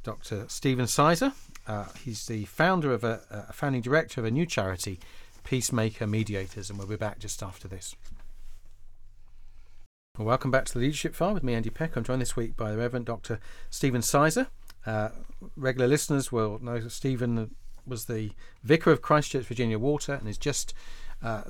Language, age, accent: English, 40-59, British